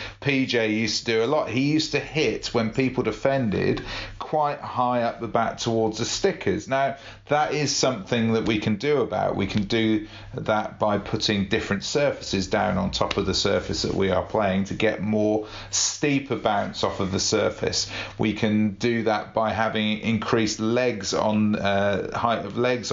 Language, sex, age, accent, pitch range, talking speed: English, male, 40-59, British, 100-115 Hz, 185 wpm